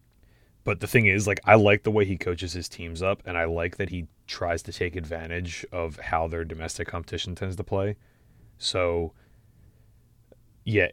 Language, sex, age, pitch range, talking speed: English, male, 20-39, 85-105 Hz, 180 wpm